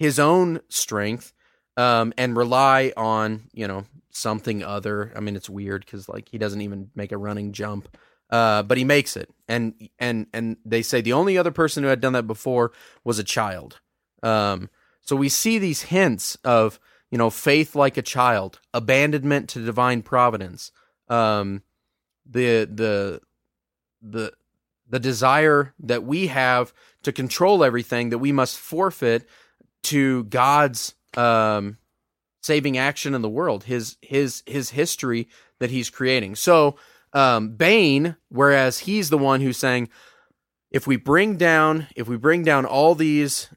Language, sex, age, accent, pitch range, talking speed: English, male, 30-49, American, 110-140 Hz, 155 wpm